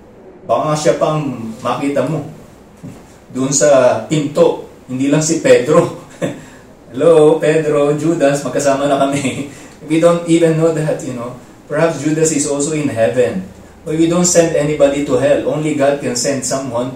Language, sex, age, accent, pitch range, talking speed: English, male, 20-39, Filipino, 130-155 Hz, 150 wpm